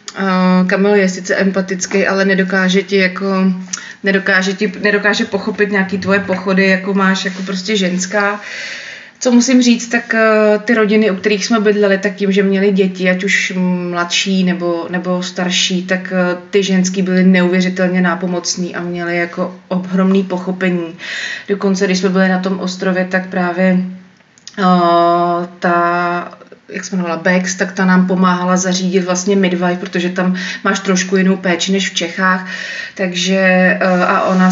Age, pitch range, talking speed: 30-49, 180-195 Hz, 155 wpm